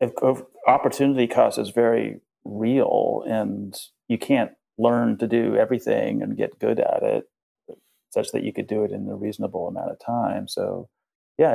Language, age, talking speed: English, 30-49, 160 wpm